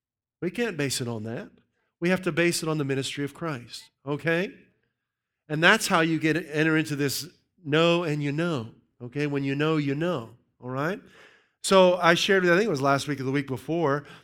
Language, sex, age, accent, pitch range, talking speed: English, male, 40-59, American, 135-210 Hz, 215 wpm